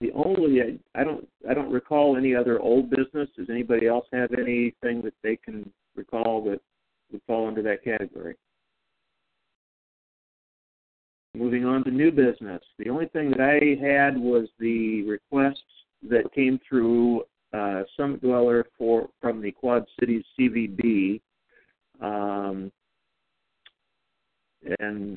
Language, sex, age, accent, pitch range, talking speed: English, male, 50-69, American, 105-120 Hz, 135 wpm